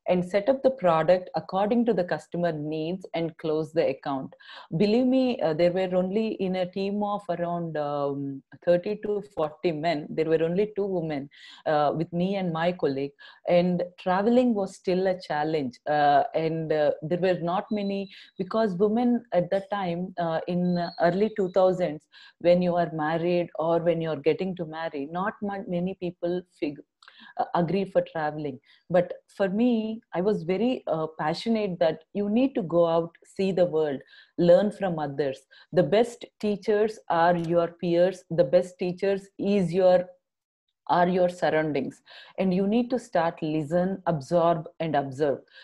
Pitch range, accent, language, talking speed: 165-200 Hz, Indian, English, 160 wpm